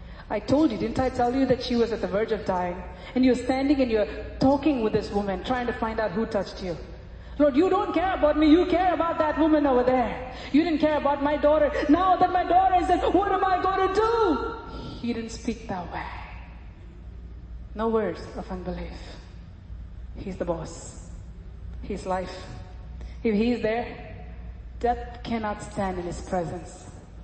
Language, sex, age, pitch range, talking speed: English, female, 30-49, 175-255 Hz, 185 wpm